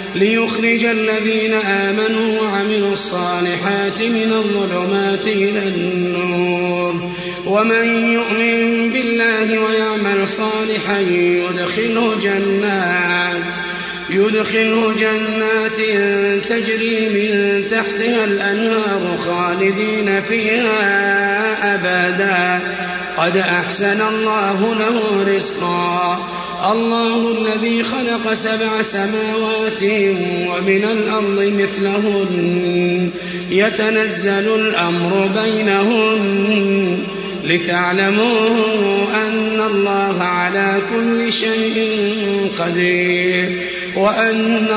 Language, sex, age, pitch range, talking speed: Arabic, male, 30-49, 180-220 Hz, 65 wpm